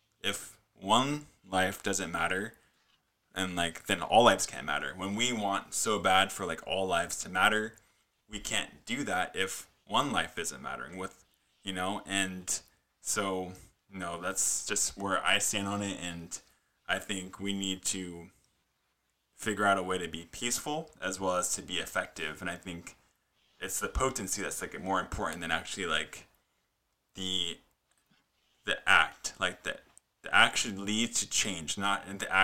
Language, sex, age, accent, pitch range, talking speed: English, male, 20-39, American, 90-105 Hz, 165 wpm